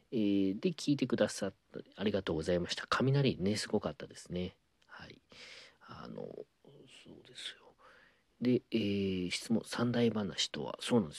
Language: Japanese